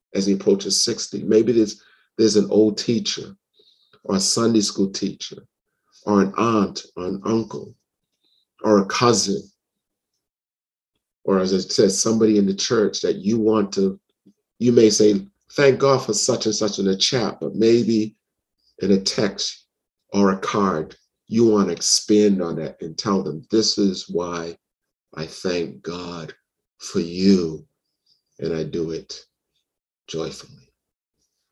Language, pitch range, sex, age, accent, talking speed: English, 80-105 Hz, male, 50-69, American, 145 wpm